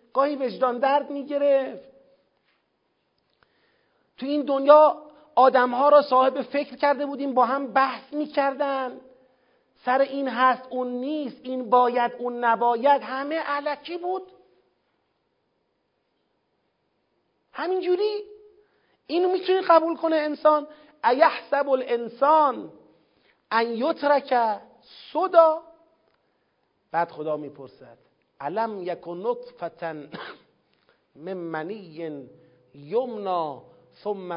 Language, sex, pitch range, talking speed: Persian, male, 170-280 Hz, 95 wpm